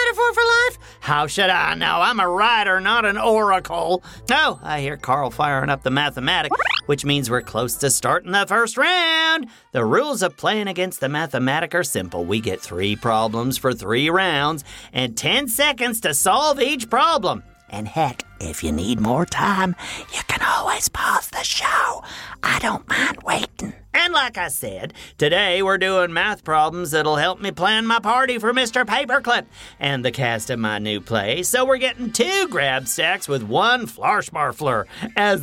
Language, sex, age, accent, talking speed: English, male, 40-59, American, 180 wpm